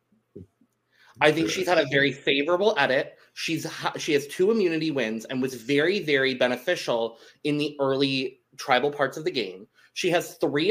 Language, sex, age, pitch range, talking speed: English, male, 30-49, 130-175 Hz, 170 wpm